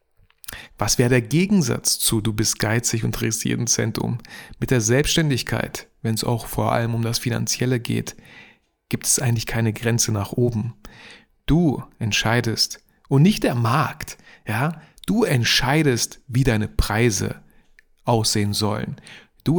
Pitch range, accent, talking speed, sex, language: 110-140 Hz, German, 140 wpm, male, German